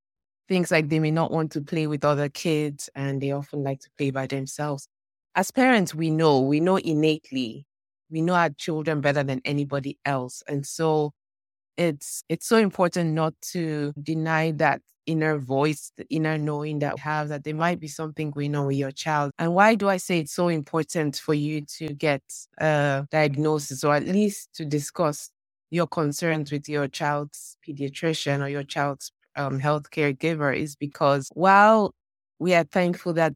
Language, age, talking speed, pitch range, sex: English, 20-39, 180 wpm, 145-160 Hz, female